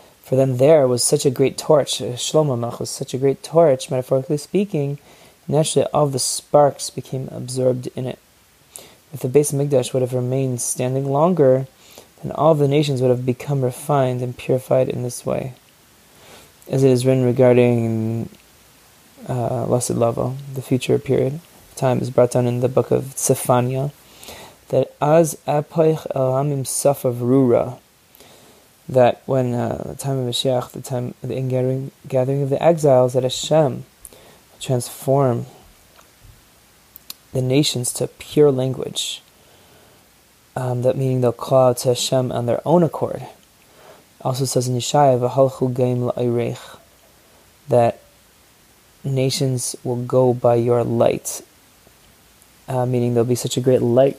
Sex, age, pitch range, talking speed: male, 20-39, 125-140 Hz, 140 wpm